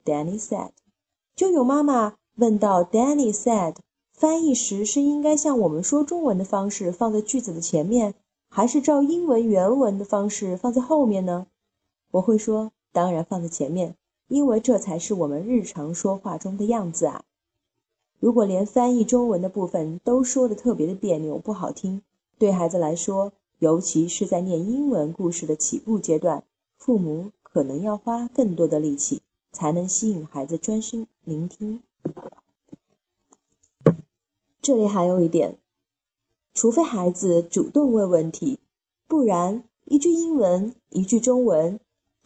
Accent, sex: native, female